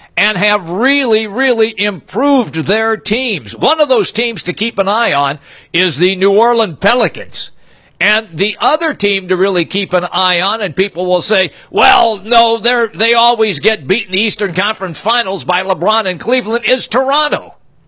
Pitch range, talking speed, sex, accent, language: 180-225 Hz, 175 wpm, male, American, English